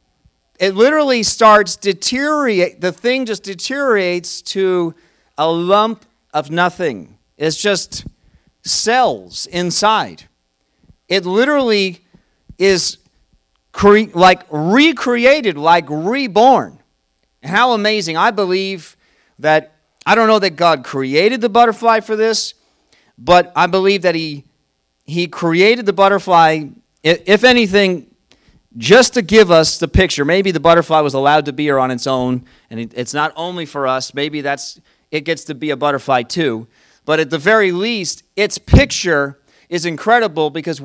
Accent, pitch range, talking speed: American, 155-205 Hz, 135 wpm